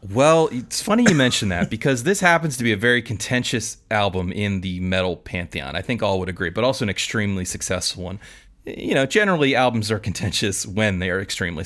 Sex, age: male, 30-49